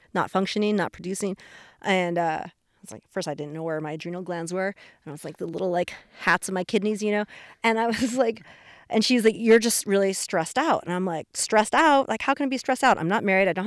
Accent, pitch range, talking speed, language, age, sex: American, 175-210 Hz, 265 wpm, English, 30-49, female